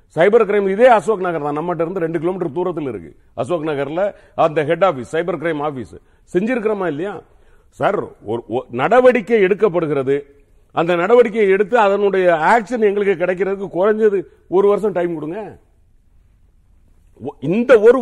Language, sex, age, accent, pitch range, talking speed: Tamil, male, 50-69, native, 140-200 Hz, 130 wpm